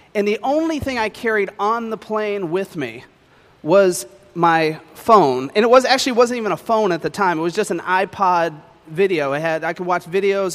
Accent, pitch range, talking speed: American, 170-215 Hz, 210 wpm